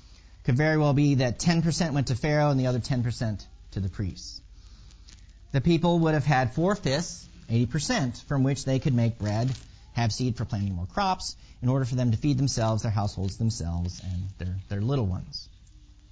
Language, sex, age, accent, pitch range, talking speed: English, male, 40-59, American, 110-145 Hz, 185 wpm